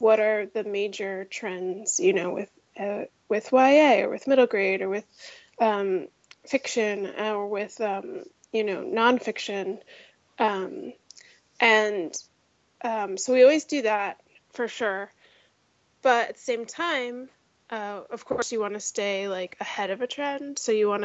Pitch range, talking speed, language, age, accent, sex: 205-270 Hz, 155 wpm, English, 20-39, American, female